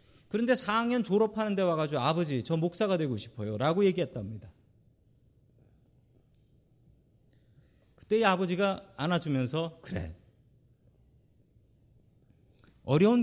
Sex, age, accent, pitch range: male, 40-59, native, 115-175 Hz